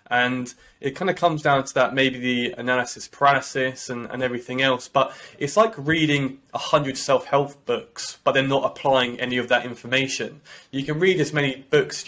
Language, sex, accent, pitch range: English, male, British, 120-135 Hz